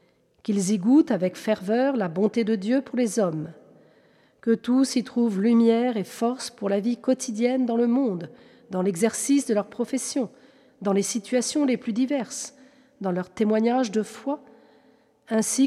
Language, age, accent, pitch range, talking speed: French, 40-59, French, 200-250 Hz, 165 wpm